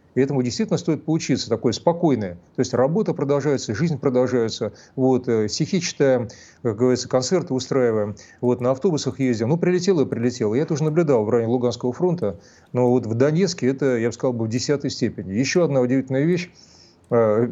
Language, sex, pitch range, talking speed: Russian, male, 115-145 Hz, 170 wpm